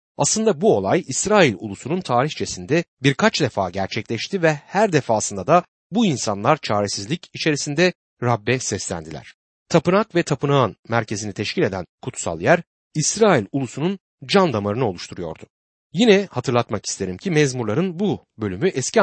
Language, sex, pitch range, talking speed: Turkish, male, 110-175 Hz, 125 wpm